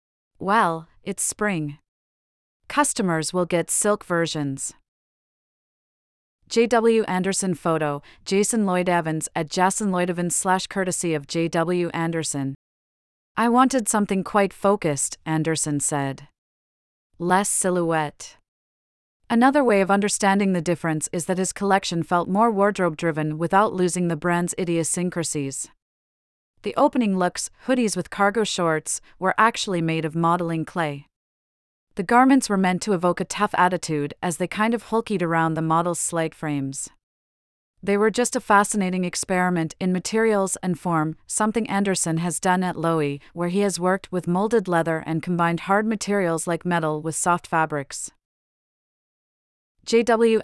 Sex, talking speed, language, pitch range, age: female, 135 wpm, English, 165-200 Hz, 30-49